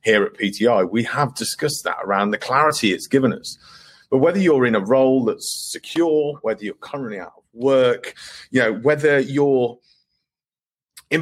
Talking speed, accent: 170 wpm, British